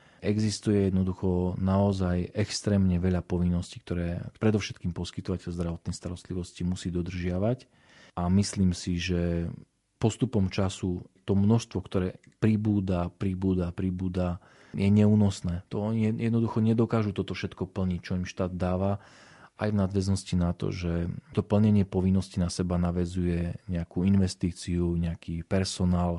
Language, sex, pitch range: Slovak, male, 90-100 Hz